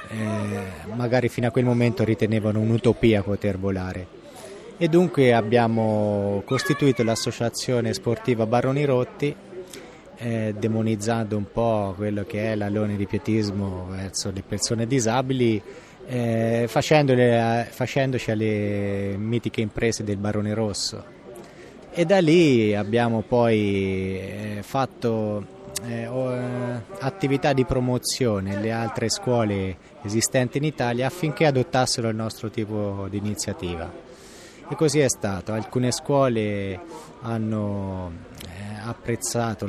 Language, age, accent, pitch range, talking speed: Italian, 20-39, native, 100-125 Hz, 110 wpm